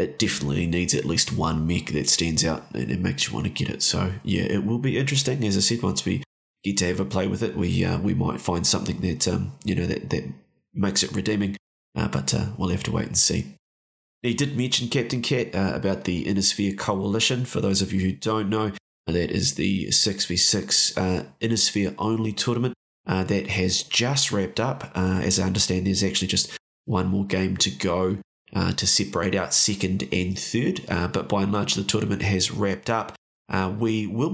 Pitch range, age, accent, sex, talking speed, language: 95-105 Hz, 20-39, Australian, male, 220 wpm, English